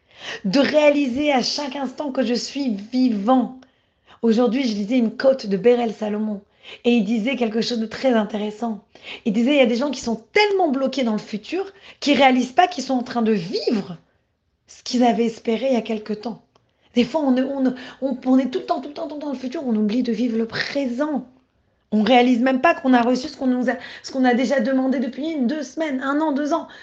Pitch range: 220-270 Hz